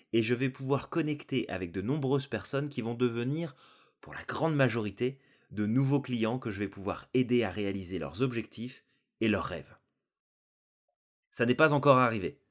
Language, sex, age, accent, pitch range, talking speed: French, male, 20-39, French, 110-140 Hz, 175 wpm